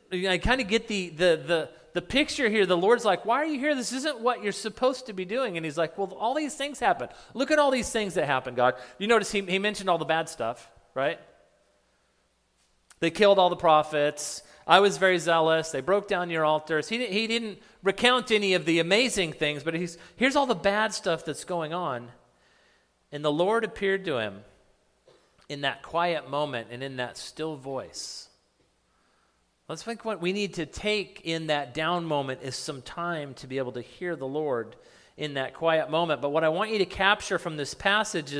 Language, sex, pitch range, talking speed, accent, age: English, male, 150-210 Hz, 210 wpm, American, 40-59